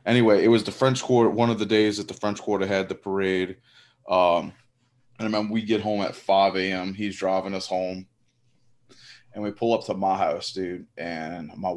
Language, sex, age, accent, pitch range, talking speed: English, male, 20-39, American, 95-120 Hz, 210 wpm